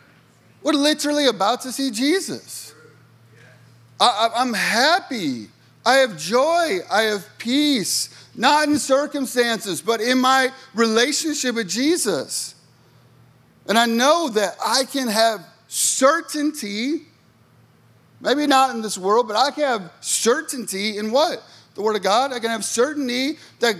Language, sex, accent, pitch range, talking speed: English, male, American, 155-265 Hz, 130 wpm